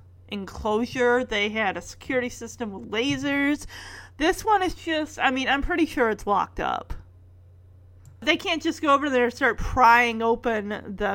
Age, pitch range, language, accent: 30-49, 200-275 Hz, English, American